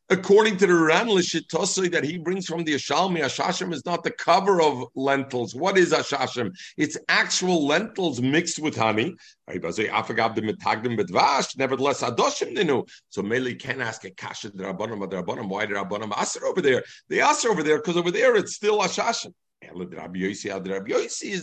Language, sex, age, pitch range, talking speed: English, male, 50-69, 125-180 Hz, 135 wpm